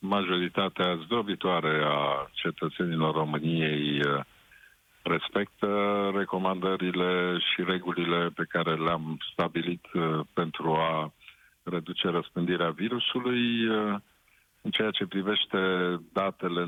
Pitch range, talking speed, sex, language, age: 80-90 Hz, 85 wpm, male, Romanian, 50-69